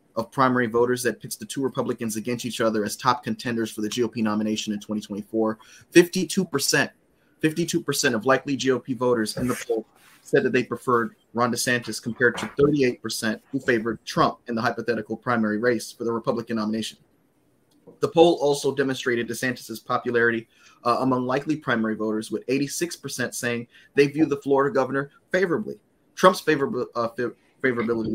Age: 30-49